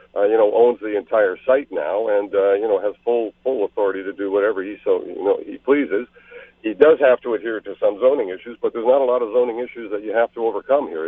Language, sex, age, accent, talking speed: English, male, 60-79, American, 260 wpm